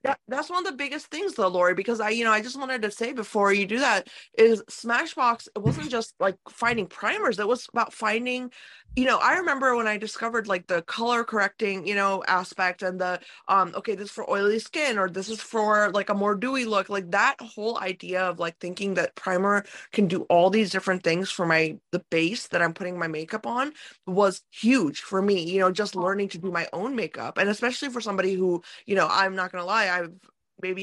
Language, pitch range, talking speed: English, 185-230 Hz, 230 wpm